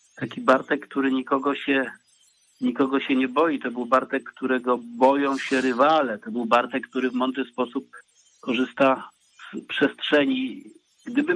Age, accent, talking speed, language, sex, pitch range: 50-69, native, 145 wpm, Polish, male, 130-150 Hz